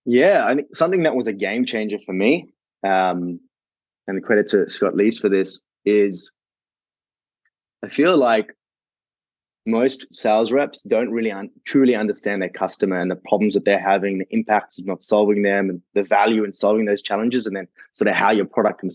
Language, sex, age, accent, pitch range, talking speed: English, male, 20-39, Australian, 100-120 Hz, 195 wpm